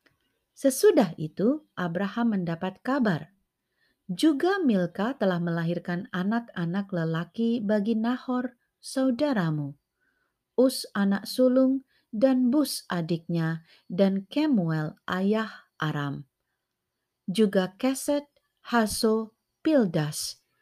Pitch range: 175-240 Hz